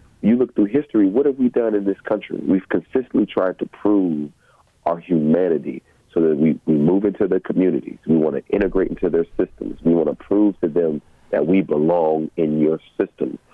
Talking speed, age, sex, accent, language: 200 wpm, 40-59, male, American, English